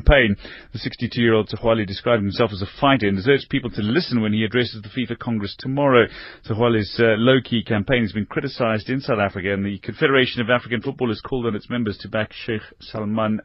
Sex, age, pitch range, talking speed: male, 30-49, 110-140 Hz, 205 wpm